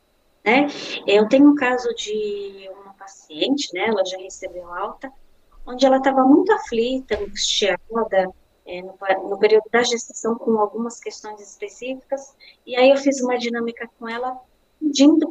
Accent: Brazilian